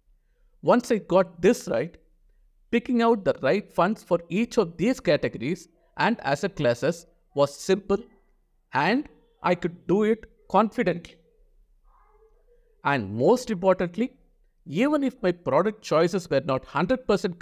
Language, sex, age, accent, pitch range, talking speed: English, male, 50-69, Indian, 145-210 Hz, 130 wpm